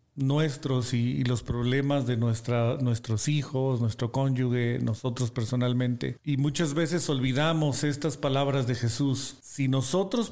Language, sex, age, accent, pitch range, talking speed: Spanish, male, 40-59, Mexican, 125-150 Hz, 135 wpm